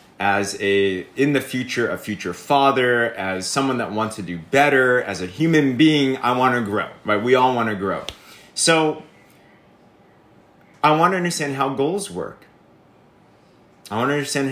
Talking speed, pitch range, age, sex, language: 170 wpm, 115-145 Hz, 30-49, male, English